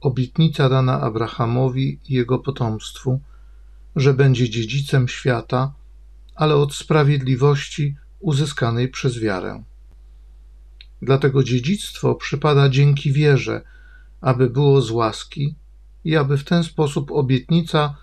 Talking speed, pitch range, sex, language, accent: 105 wpm, 100-140 Hz, male, Polish, native